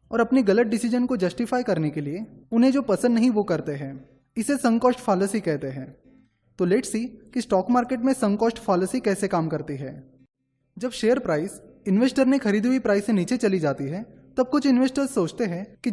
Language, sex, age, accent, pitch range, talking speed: Hindi, male, 20-39, native, 170-250 Hz, 100 wpm